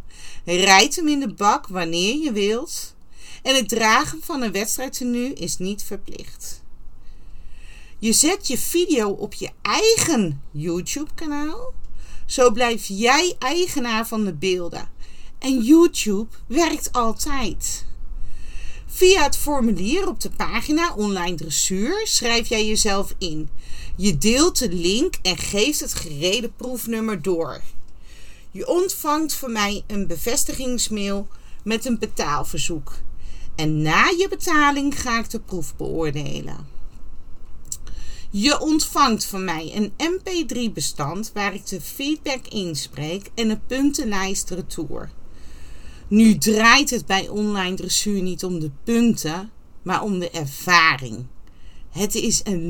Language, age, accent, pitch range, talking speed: Dutch, 40-59, Dutch, 165-255 Hz, 125 wpm